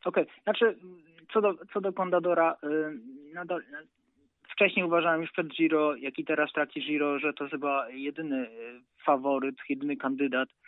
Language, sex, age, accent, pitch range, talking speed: Polish, male, 20-39, native, 135-170 Hz, 155 wpm